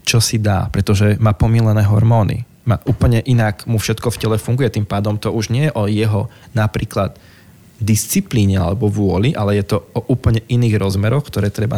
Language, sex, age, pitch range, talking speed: Slovak, male, 20-39, 105-120 Hz, 185 wpm